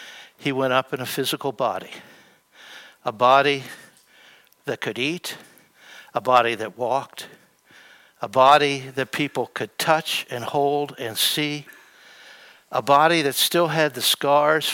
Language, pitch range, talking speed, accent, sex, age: English, 135-170 Hz, 135 wpm, American, male, 60-79